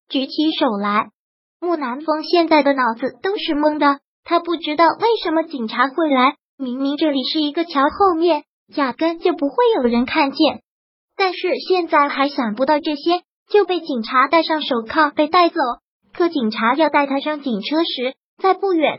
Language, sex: Chinese, male